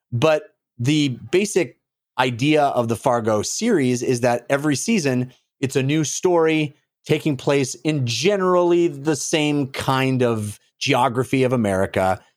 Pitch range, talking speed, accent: 120-155 Hz, 130 wpm, American